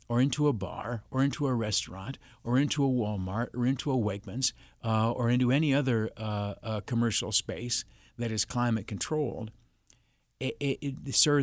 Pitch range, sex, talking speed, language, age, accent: 110-130 Hz, male, 150 wpm, English, 50-69, American